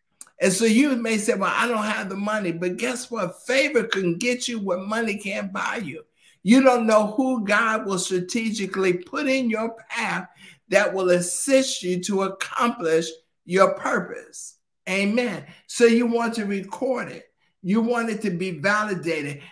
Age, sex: 60-79, male